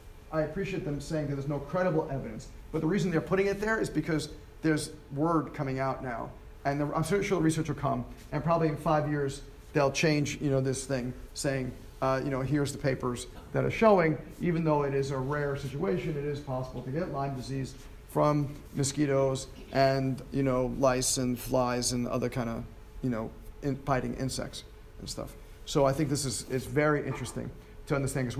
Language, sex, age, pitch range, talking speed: English, male, 40-59, 125-155 Hz, 200 wpm